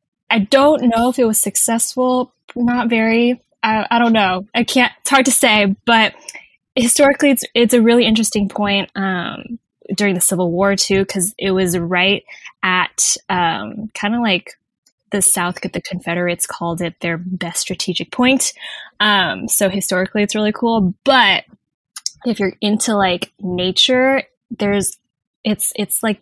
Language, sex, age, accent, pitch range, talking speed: English, female, 10-29, American, 185-235 Hz, 155 wpm